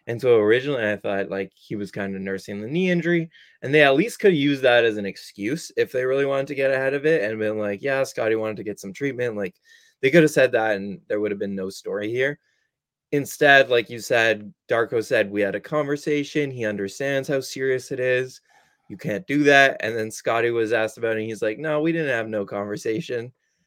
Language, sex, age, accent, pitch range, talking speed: English, male, 20-39, American, 105-150 Hz, 235 wpm